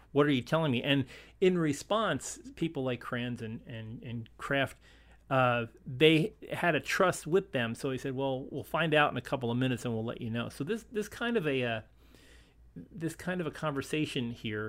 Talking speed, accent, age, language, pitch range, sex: 215 wpm, American, 40-59, English, 115-140 Hz, male